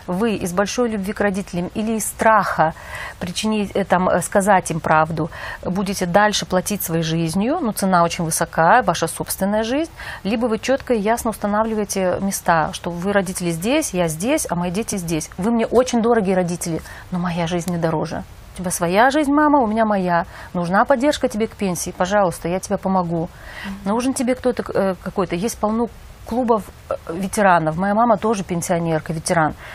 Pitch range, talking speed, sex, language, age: 180-245 Hz, 170 wpm, female, Russian, 30-49